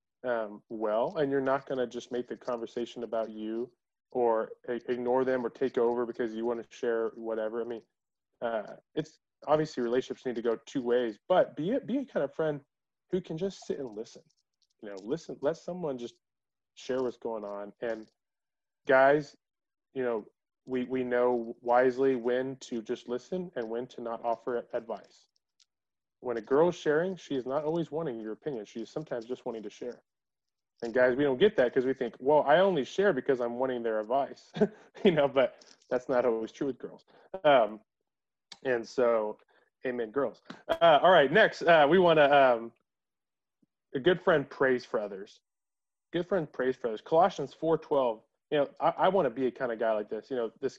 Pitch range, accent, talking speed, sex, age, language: 115-145 Hz, American, 195 wpm, male, 20-39, English